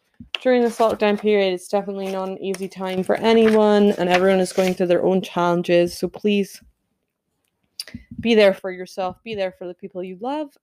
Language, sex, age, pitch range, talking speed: English, female, 20-39, 185-230 Hz, 185 wpm